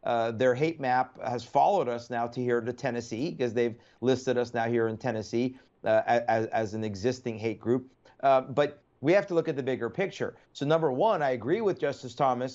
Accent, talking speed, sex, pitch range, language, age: American, 215 wpm, male, 120-150 Hz, English, 40-59